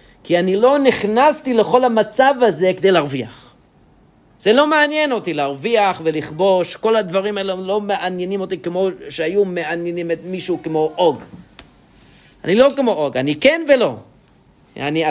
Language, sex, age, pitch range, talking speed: English, male, 40-59, 155-220 Hz, 125 wpm